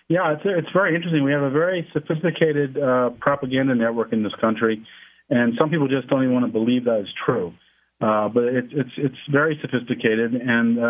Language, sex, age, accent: English, male, 50-69, American